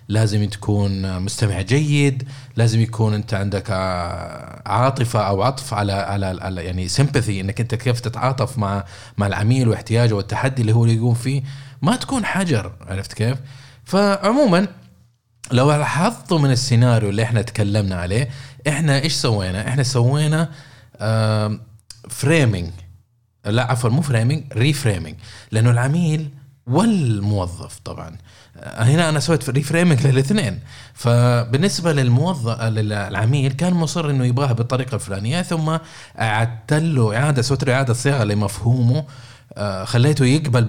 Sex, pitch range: male, 105-140 Hz